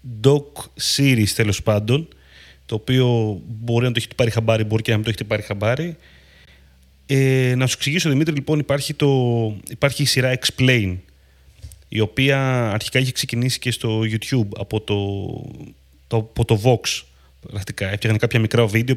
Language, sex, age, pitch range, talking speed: Greek, male, 30-49, 100-125 Hz, 155 wpm